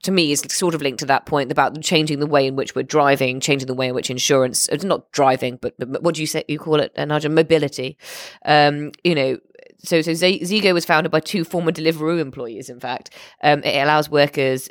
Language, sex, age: English, female, 20-39